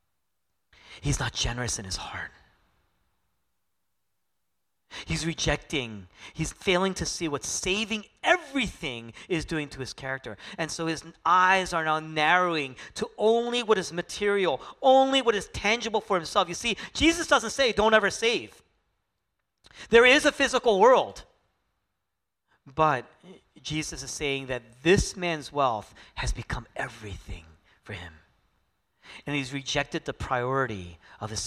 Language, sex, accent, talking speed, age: English, male, American, 135 wpm, 40-59